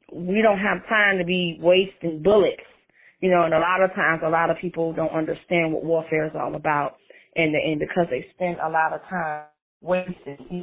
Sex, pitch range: female, 165-200 Hz